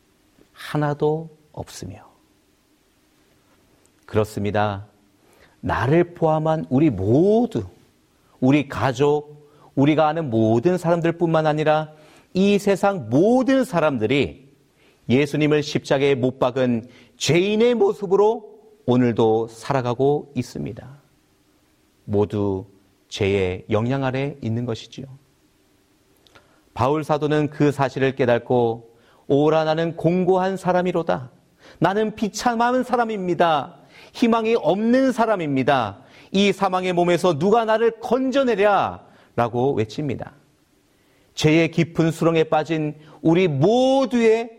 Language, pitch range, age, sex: Korean, 120-180 Hz, 40-59, male